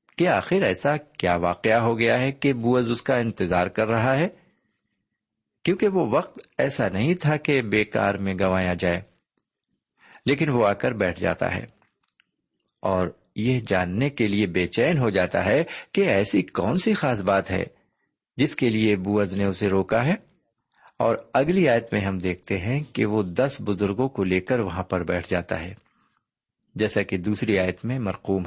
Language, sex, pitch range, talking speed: Urdu, male, 95-140 Hz, 175 wpm